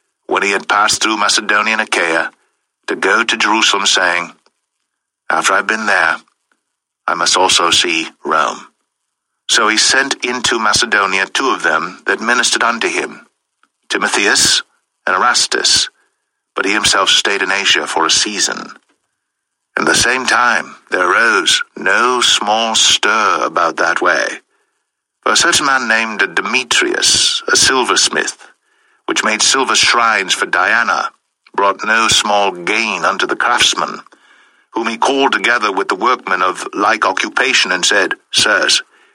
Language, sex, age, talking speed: English, male, 60-79, 145 wpm